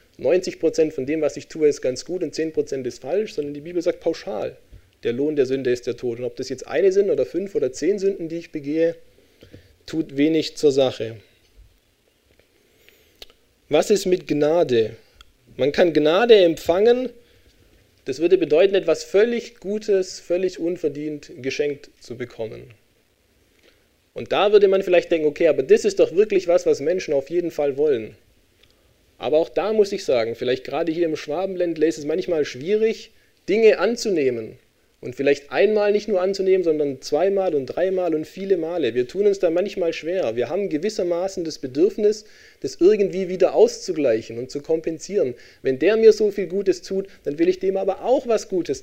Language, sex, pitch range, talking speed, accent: German, male, 145-200 Hz, 175 wpm, German